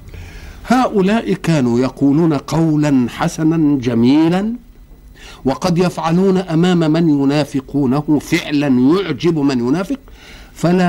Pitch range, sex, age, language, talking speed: 140-200 Hz, male, 50-69, Arabic, 90 wpm